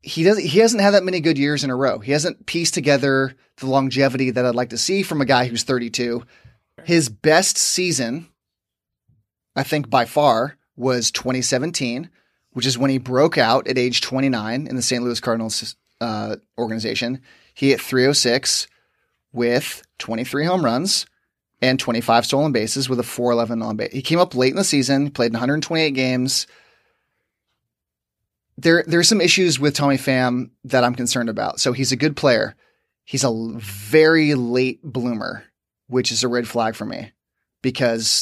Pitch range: 120-150 Hz